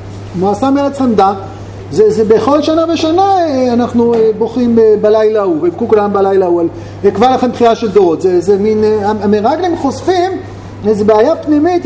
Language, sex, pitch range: Hebrew, male, 205-300 Hz